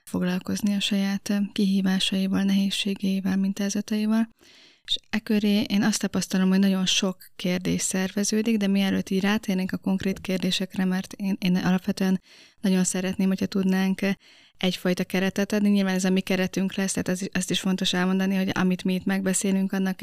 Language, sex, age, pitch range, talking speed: Hungarian, female, 20-39, 185-200 Hz, 160 wpm